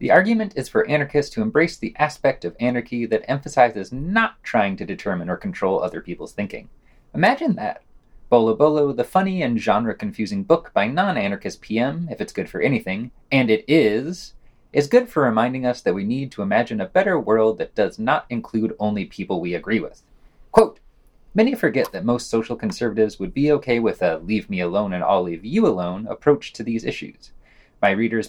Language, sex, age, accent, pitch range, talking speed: English, male, 30-49, American, 115-180 Hz, 190 wpm